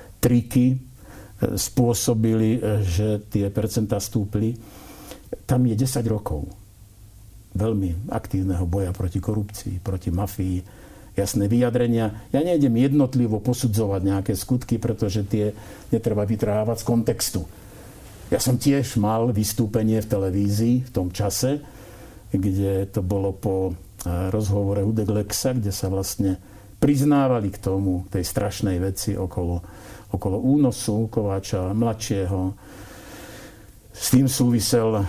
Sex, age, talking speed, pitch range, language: male, 60-79, 110 wpm, 100-115 Hz, Slovak